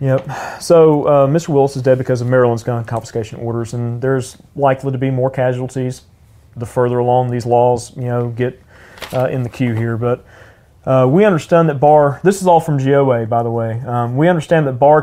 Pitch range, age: 125-145 Hz, 40-59